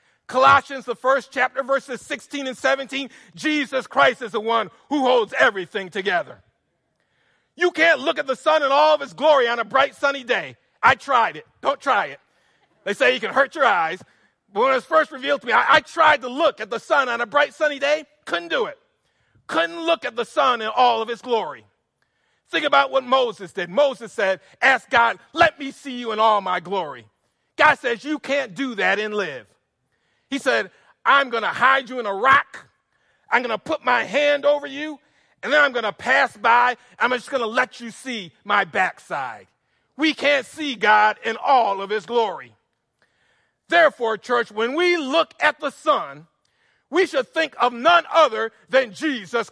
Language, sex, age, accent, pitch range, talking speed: English, male, 40-59, American, 230-295 Hz, 200 wpm